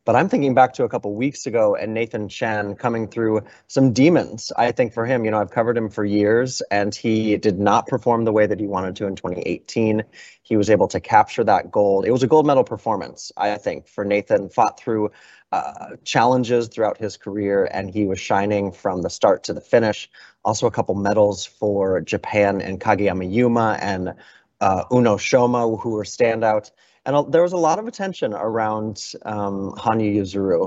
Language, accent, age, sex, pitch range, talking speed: English, American, 30-49, male, 105-125 Hz, 200 wpm